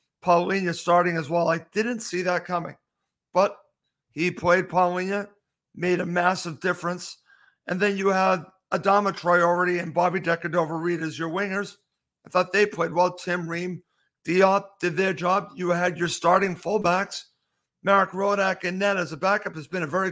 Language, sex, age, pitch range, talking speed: English, male, 50-69, 170-195 Hz, 170 wpm